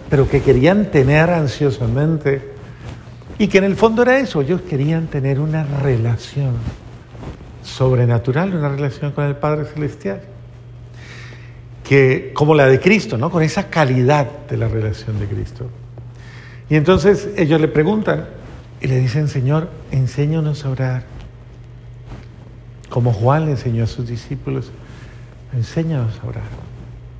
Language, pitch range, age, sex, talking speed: Spanish, 120-150 Hz, 50-69, male, 130 wpm